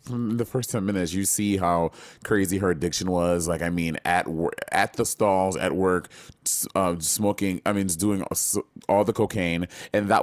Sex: male